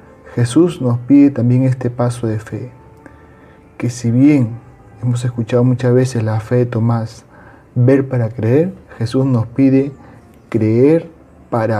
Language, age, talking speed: Spanish, 40-59, 135 wpm